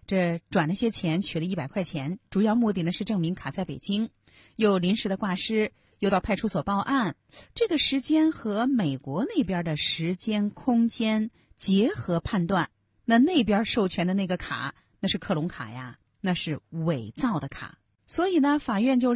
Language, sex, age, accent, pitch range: Chinese, female, 30-49, native, 155-225 Hz